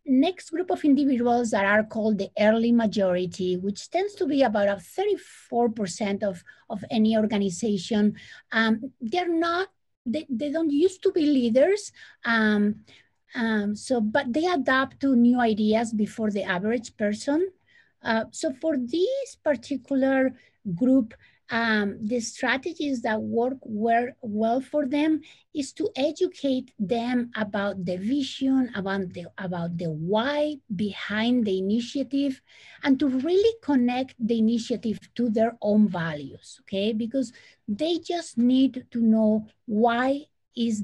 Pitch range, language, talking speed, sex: 210-275 Hz, English, 135 wpm, female